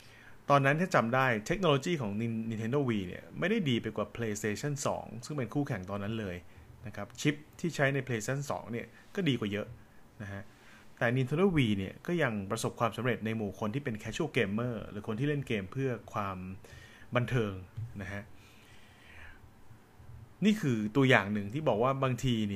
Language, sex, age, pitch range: Thai, male, 20-39, 105-130 Hz